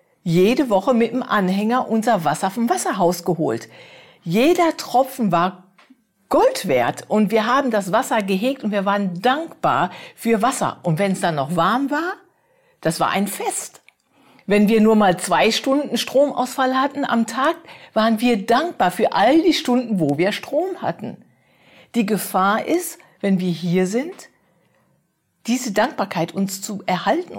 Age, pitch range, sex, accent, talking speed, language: 50-69, 190-255 Hz, female, German, 155 wpm, German